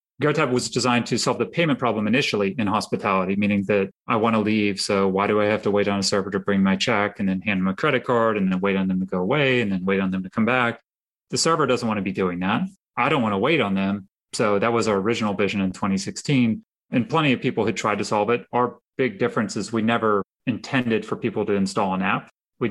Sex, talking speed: male, 265 wpm